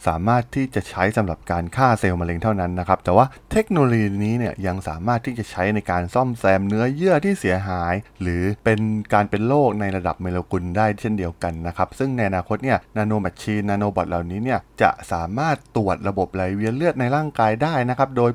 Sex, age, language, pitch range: male, 20-39, Thai, 90-120 Hz